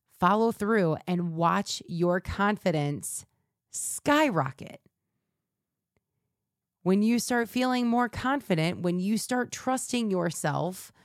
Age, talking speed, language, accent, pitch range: 30-49, 100 wpm, English, American, 155-215 Hz